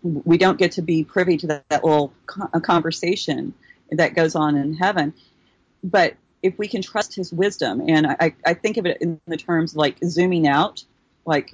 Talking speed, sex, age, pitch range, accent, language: 185 wpm, female, 40-59, 145-165 Hz, American, English